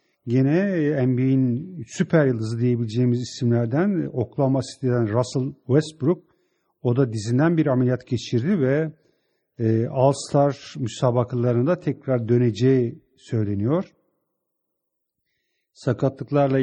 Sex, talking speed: male, 80 wpm